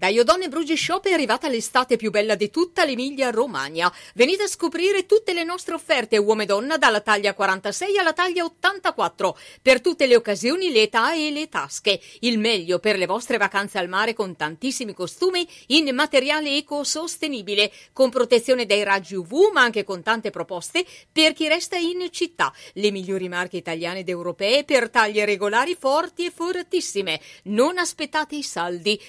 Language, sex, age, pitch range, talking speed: Italian, female, 40-59, 205-315 Hz, 165 wpm